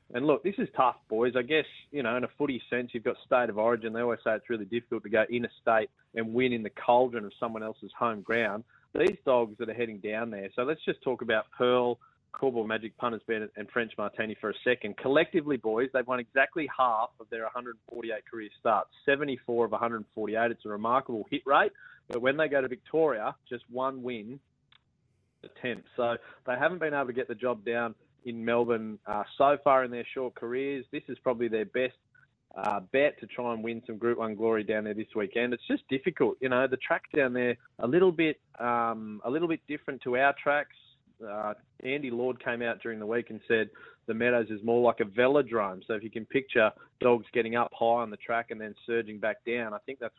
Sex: male